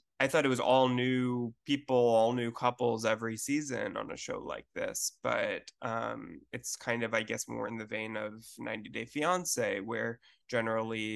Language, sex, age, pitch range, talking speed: English, male, 20-39, 115-140 Hz, 175 wpm